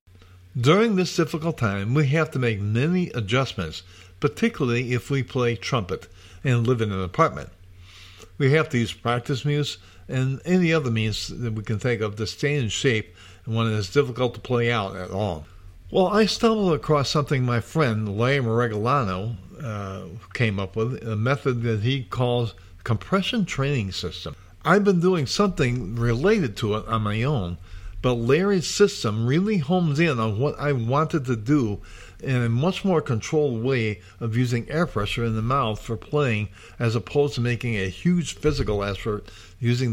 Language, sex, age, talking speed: English, male, 50-69, 175 wpm